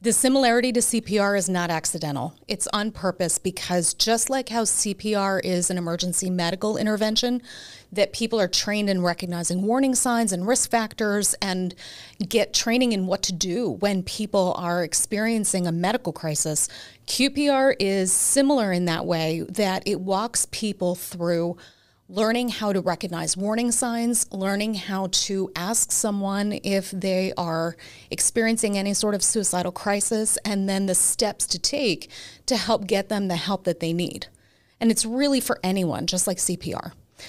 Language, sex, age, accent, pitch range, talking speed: English, female, 30-49, American, 185-230 Hz, 160 wpm